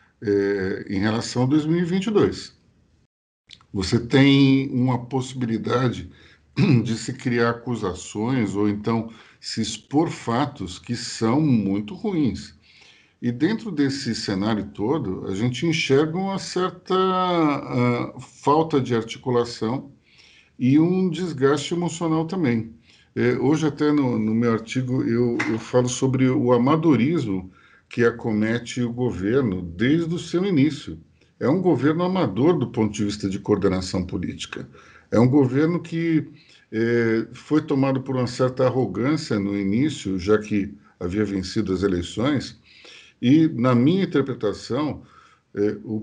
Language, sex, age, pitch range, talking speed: Portuguese, male, 50-69, 110-150 Hz, 125 wpm